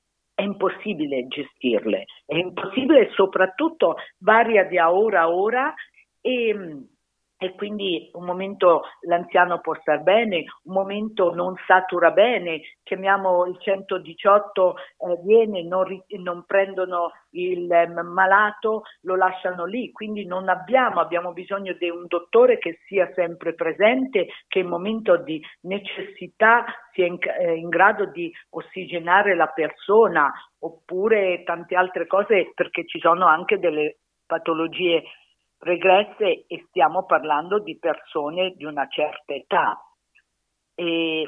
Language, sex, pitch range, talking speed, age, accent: Italian, female, 170-205 Hz, 120 wpm, 50-69, native